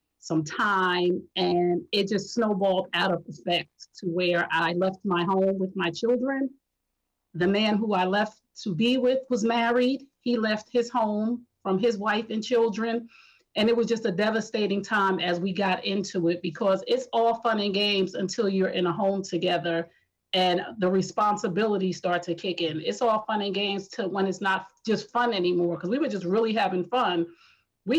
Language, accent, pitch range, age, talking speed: English, American, 185-225 Hz, 40-59, 190 wpm